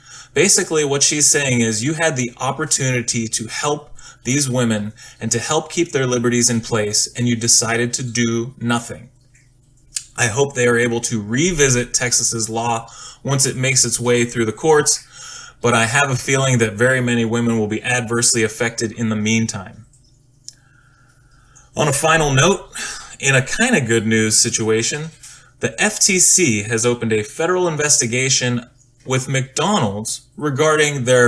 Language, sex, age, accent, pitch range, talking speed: English, male, 20-39, American, 115-140 Hz, 155 wpm